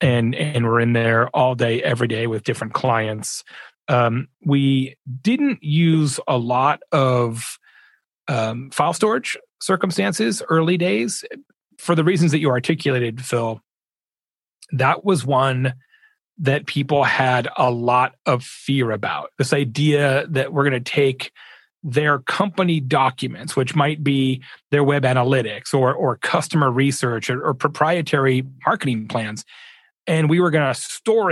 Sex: male